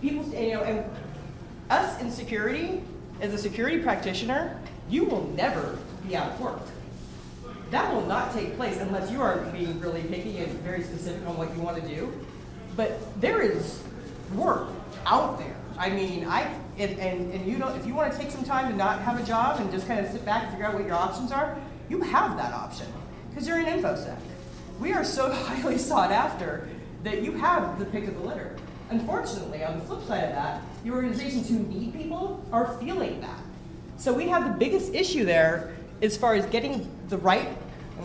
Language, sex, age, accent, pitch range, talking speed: English, female, 30-49, American, 175-250 Hz, 200 wpm